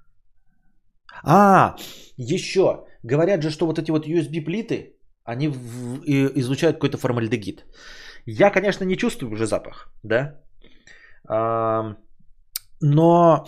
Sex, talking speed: male, 100 wpm